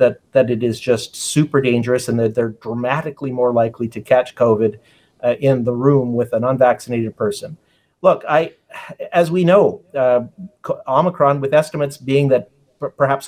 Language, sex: English, male